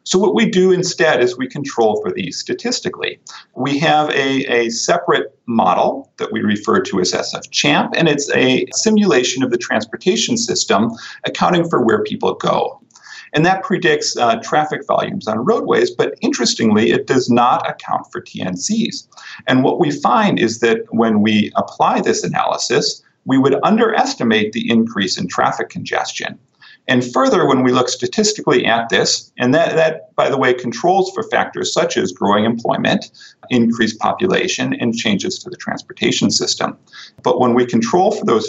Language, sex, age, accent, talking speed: English, male, 40-59, American, 165 wpm